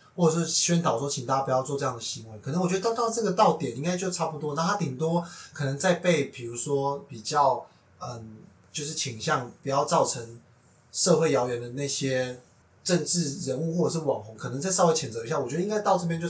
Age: 20-39